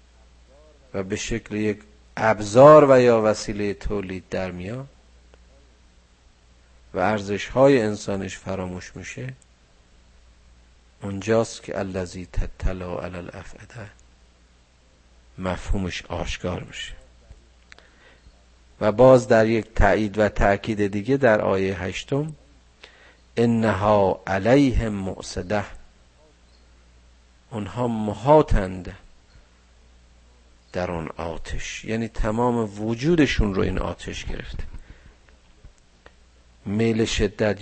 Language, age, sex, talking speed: Persian, 50-69, male, 85 wpm